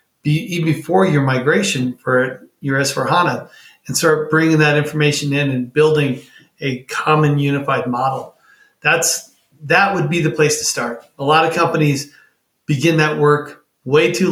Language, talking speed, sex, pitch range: English, 160 wpm, male, 135-155 Hz